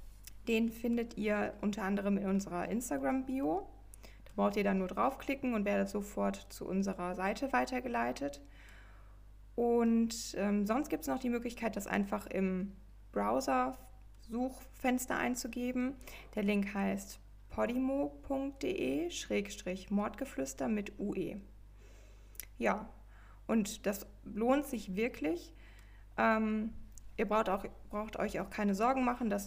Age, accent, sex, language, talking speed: 20-39, German, female, English, 115 wpm